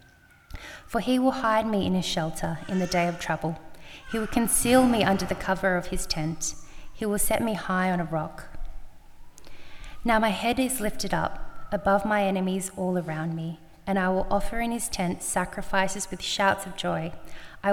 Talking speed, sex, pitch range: 190 wpm, female, 170-210 Hz